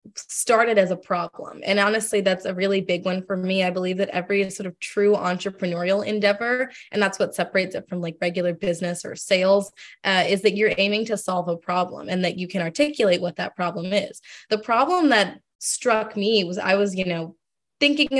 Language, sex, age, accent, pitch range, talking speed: English, female, 20-39, American, 185-220 Hz, 205 wpm